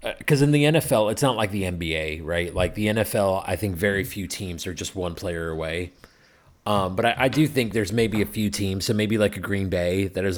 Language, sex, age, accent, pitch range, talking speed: English, male, 30-49, American, 95-115 Hz, 245 wpm